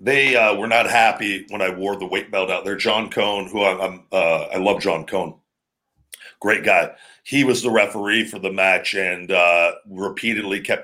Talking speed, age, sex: 200 wpm, 40-59, male